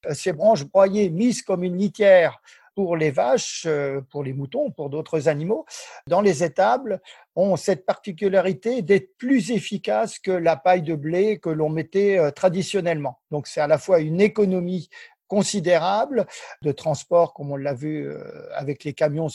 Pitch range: 150-200 Hz